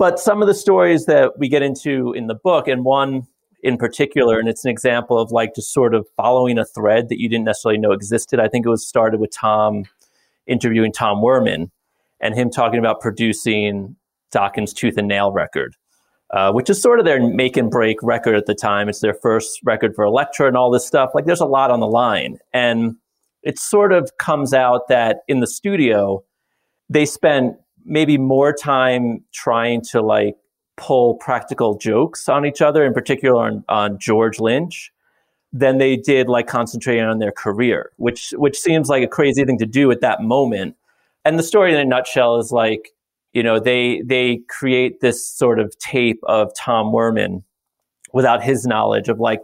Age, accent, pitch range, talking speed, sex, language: 30-49, American, 110-135 Hz, 195 wpm, male, English